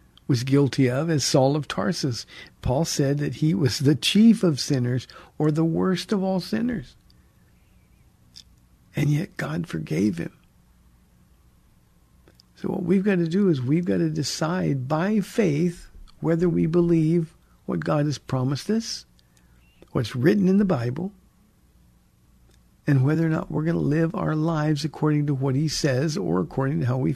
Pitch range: 120-165 Hz